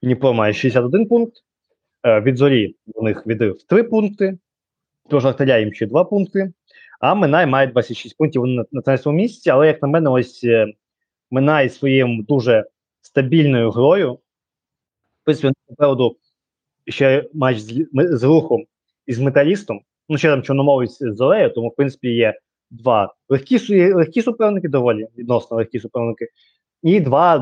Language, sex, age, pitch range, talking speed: Ukrainian, male, 20-39, 115-150 Hz, 145 wpm